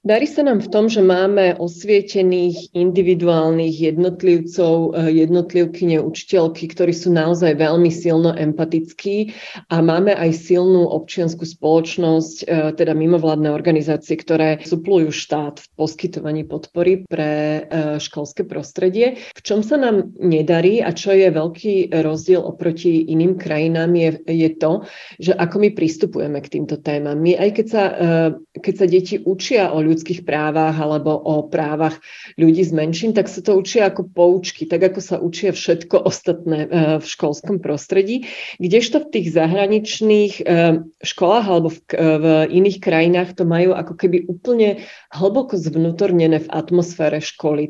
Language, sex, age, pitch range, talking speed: Slovak, female, 30-49, 160-190 Hz, 140 wpm